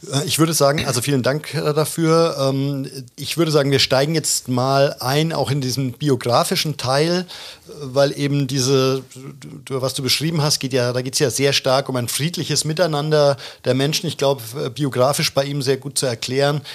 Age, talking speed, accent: 50-69, 180 wpm, German